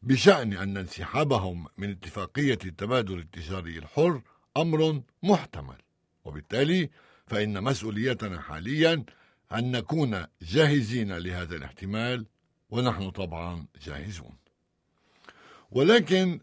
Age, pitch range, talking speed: 60-79, 90-130 Hz, 85 wpm